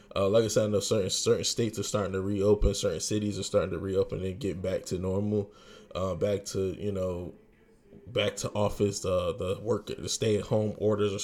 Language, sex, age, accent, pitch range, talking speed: English, male, 20-39, American, 100-155 Hz, 225 wpm